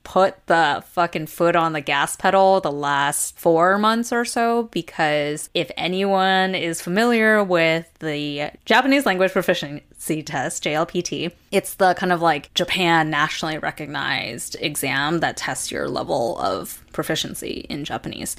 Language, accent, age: English, American, 10-29